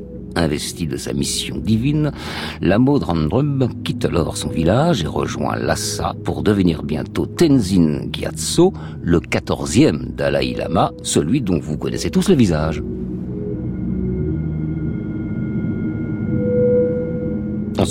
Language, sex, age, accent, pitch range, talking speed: French, male, 50-69, French, 70-105 Hz, 105 wpm